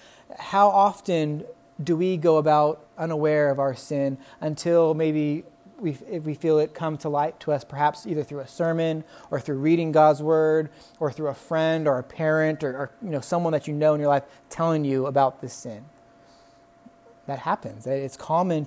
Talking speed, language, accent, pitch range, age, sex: 190 wpm, English, American, 140-165 Hz, 30-49, male